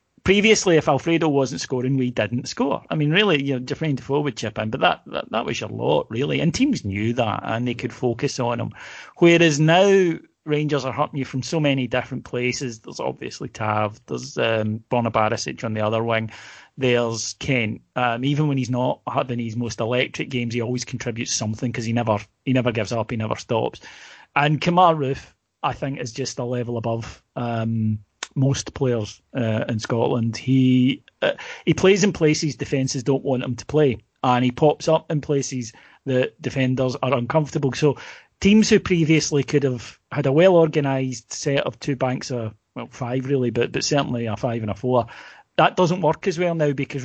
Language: English